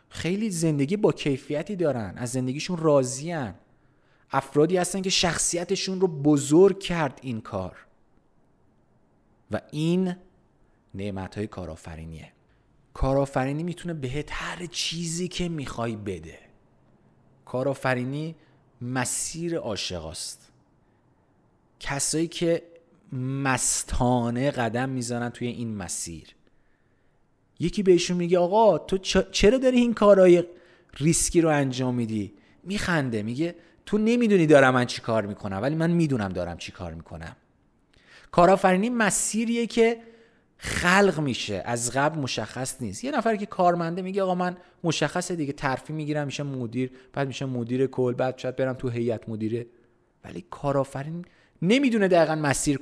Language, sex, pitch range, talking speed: Persian, male, 120-180 Hz, 120 wpm